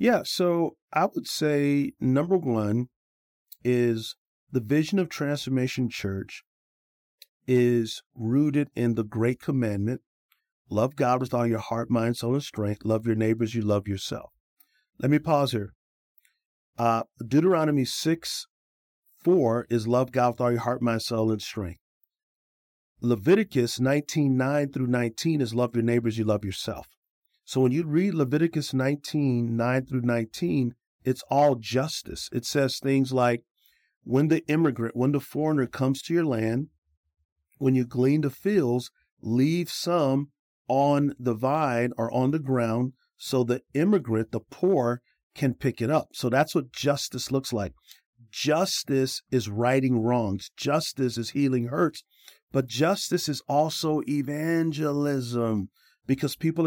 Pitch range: 115-145 Hz